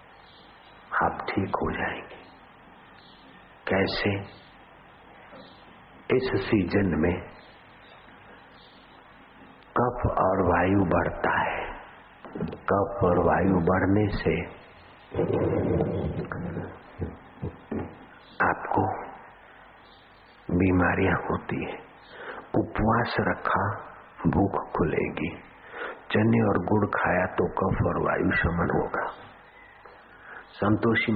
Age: 60-79